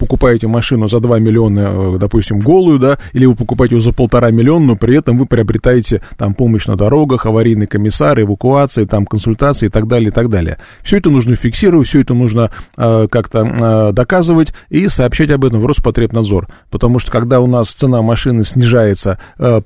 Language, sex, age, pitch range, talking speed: Russian, male, 30-49, 110-130 Hz, 185 wpm